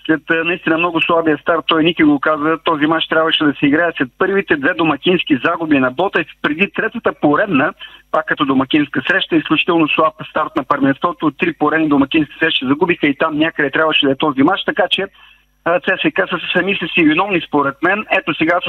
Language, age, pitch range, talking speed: Bulgarian, 40-59, 150-185 Hz, 195 wpm